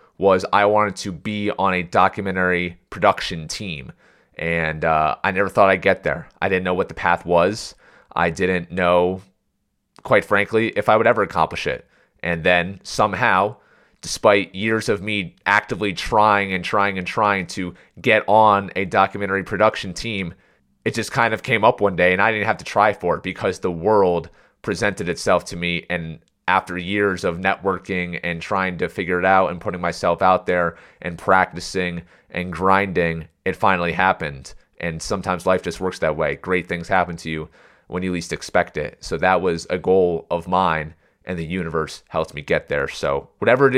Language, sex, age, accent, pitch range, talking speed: English, male, 30-49, American, 85-100 Hz, 185 wpm